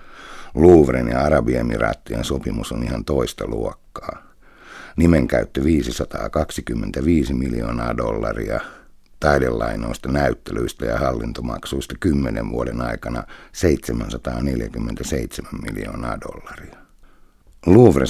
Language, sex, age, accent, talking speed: Finnish, male, 60-79, native, 75 wpm